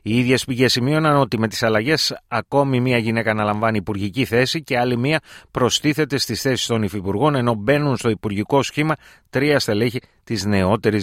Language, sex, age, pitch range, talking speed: Greek, male, 30-49, 110-135 Hz, 170 wpm